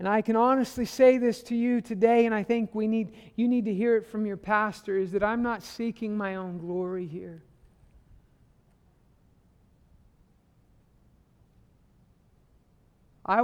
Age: 50-69